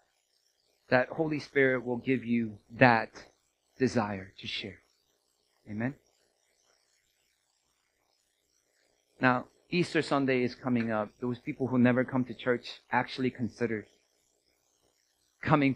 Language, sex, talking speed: English, male, 105 wpm